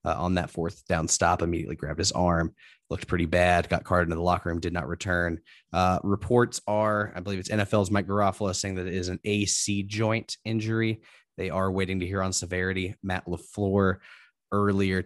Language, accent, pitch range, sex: English, American, 90-105 Hz, male